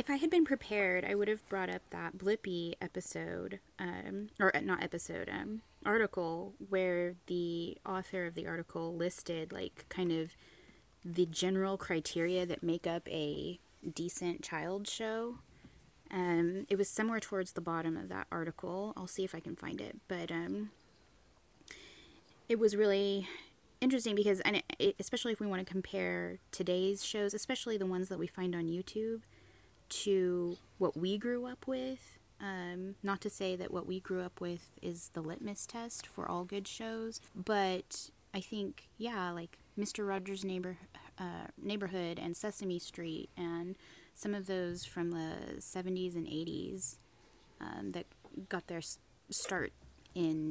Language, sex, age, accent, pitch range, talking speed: English, female, 20-39, American, 170-200 Hz, 160 wpm